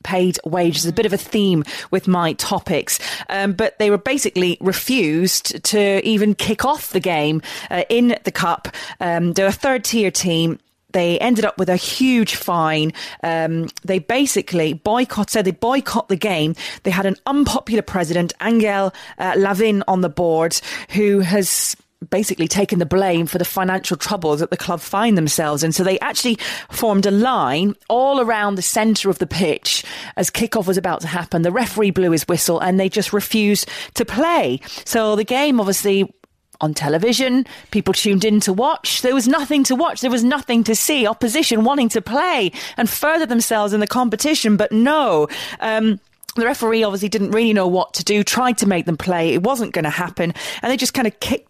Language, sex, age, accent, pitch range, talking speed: English, female, 30-49, British, 180-230 Hz, 190 wpm